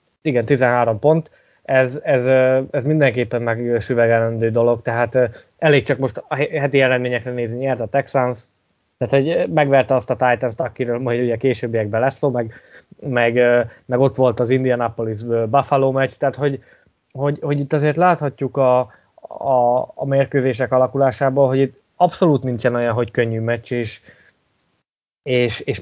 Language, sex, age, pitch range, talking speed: Hungarian, male, 20-39, 120-135 Hz, 145 wpm